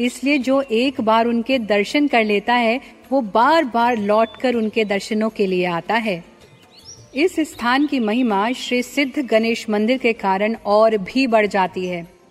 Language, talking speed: Hindi, 165 wpm